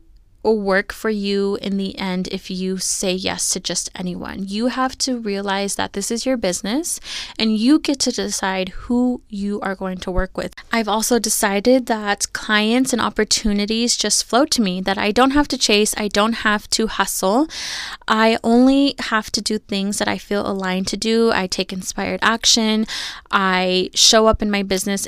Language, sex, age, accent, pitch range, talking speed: English, female, 20-39, American, 190-225 Hz, 185 wpm